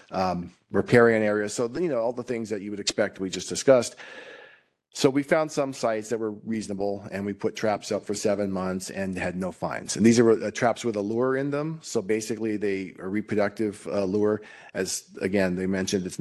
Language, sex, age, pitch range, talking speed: English, male, 40-59, 95-115 Hz, 215 wpm